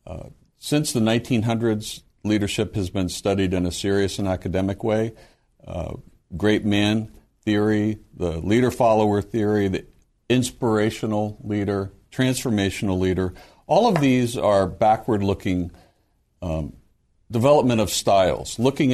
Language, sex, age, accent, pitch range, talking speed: English, male, 60-79, American, 95-120 Hz, 120 wpm